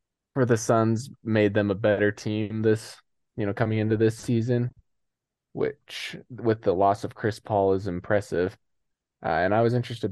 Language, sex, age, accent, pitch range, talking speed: English, male, 20-39, American, 100-115 Hz, 170 wpm